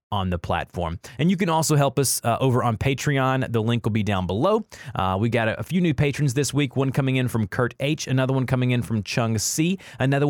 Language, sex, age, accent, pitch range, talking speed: English, male, 20-39, American, 115-145 Hz, 245 wpm